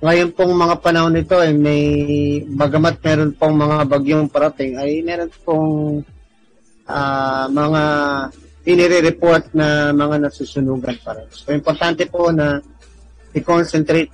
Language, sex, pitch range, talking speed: Filipino, male, 135-160 Hz, 125 wpm